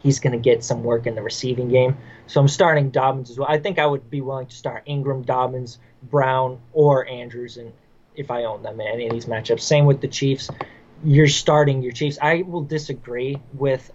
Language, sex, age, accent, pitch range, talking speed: English, male, 20-39, American, 125-145 Hz, 220 wpm